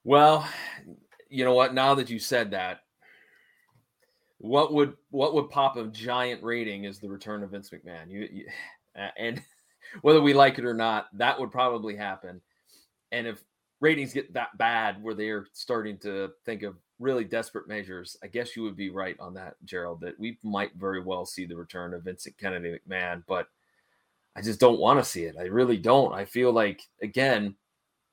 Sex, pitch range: male, 105-145 Hz